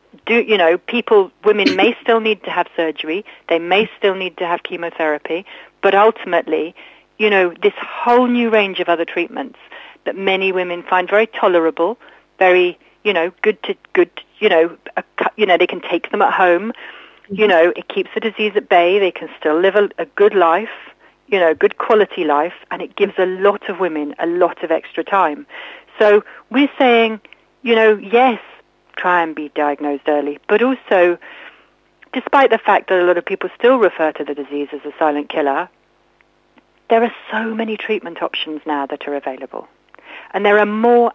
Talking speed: 185 wpm